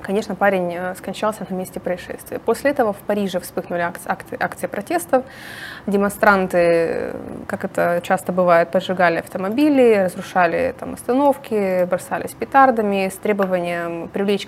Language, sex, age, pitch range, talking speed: Russian, female, 20-39, 180-230 Hz, 120 wpm